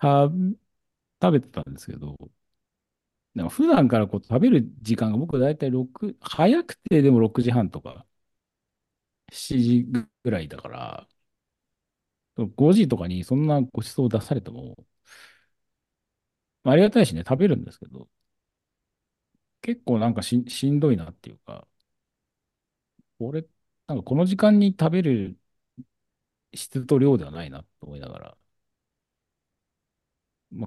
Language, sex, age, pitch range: Japanese, male, 40-59, 105-140 Hz